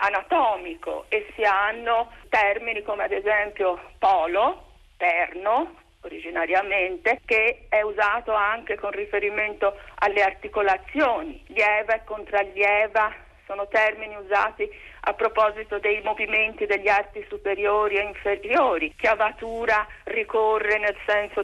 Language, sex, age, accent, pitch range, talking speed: Italian, female, 50-69, native, 200-235 Hz, 105 wpm